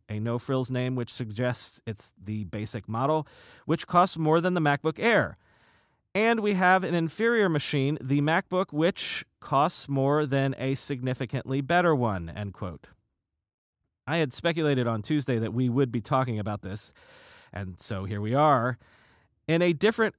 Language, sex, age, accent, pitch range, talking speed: English, male, 40-59, American, 115-165 Hz, 160 wpm